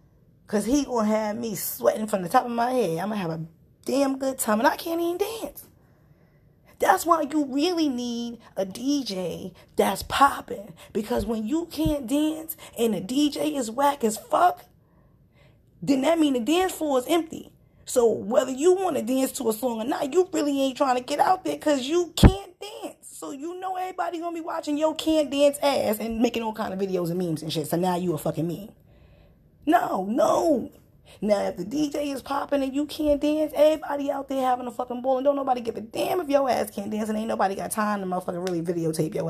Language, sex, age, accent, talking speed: English, female, 20-39, American, 225 wpm